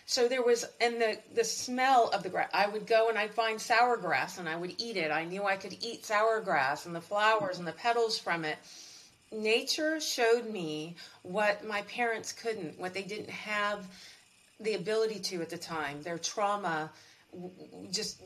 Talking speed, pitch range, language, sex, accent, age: 190 wpm, 170-225 Hz, English, female, American, 40-59